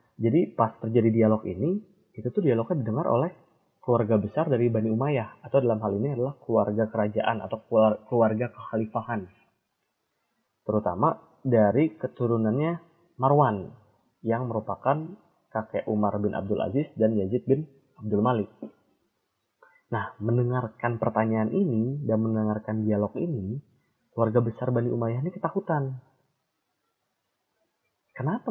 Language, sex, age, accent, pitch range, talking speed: Indonesian, male, 30-49, native, 110-135 Hz, 120 wpm